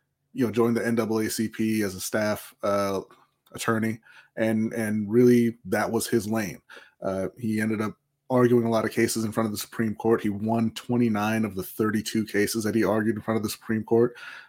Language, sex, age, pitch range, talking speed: English, male, 20-39, 100-115 Hz, 200 wpm